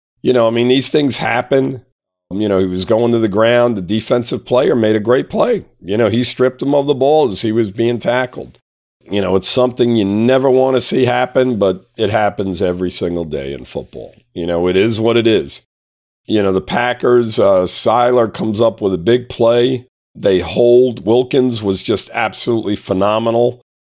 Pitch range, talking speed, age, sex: 95-120 Hz, 200 wpm, 50-69, male